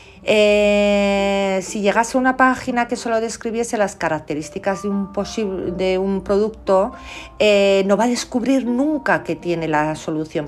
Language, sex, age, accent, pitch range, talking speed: Spanish, female, 50-69, Spanish, 150-200 Hz, 155 wpm